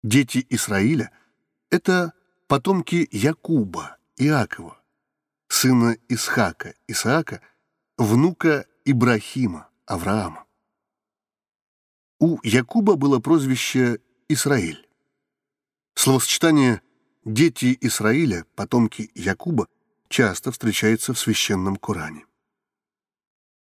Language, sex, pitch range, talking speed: Russian, male, 110-150 Hz, 70 wpm